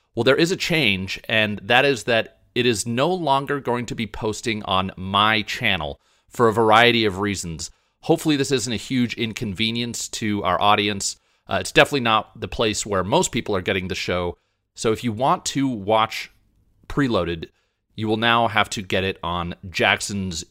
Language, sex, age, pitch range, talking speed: English, male, 30-49, 90-115 Hz, 185 wpm